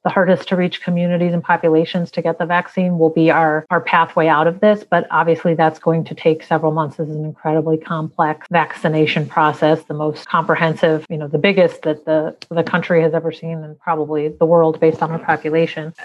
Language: English